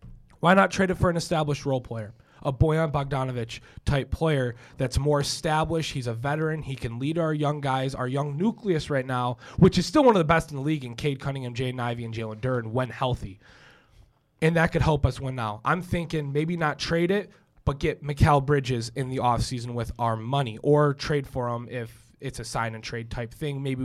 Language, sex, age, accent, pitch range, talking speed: English, male, 20-39, American, 120-160 Hz, 210 wpm